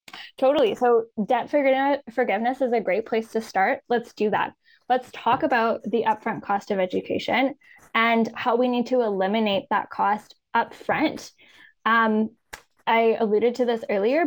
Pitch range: 215-250 Hz